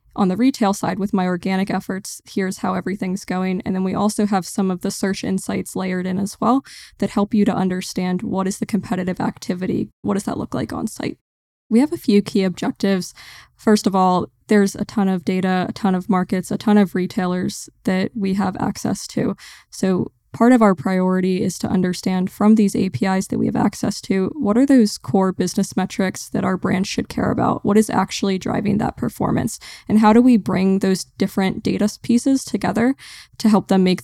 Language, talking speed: English, 210 wpm